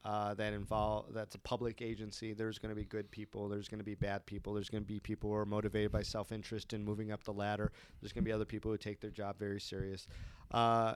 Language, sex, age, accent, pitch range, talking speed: English, male, 40-59, American, 105-120 Hz, 255 wpm